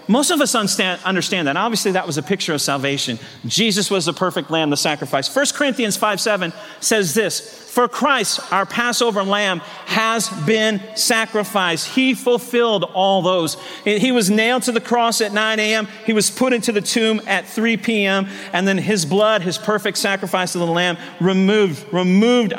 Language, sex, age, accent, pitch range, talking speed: English, male, 40-59, American, 180-240 Hz, 180 wpm